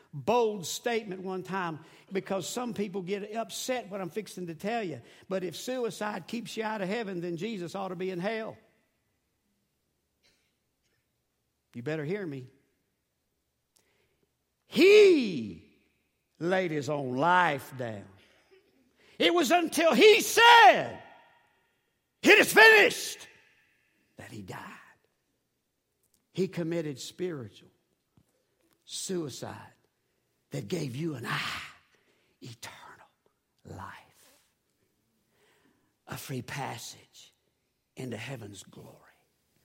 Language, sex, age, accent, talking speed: English, male, 60-79, American, 105 wpm